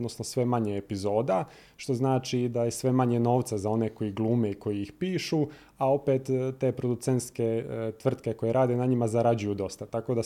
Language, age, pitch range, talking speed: Croatian, 20-39, 110-130 Hz, 185 wpm